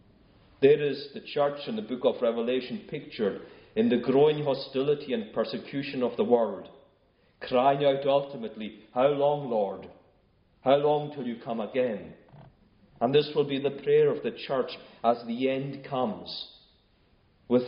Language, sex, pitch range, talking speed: English, male, 105-140 Hz, 155 wpm